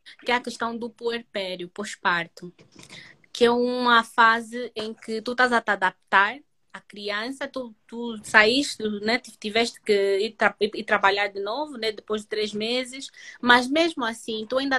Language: Portuguese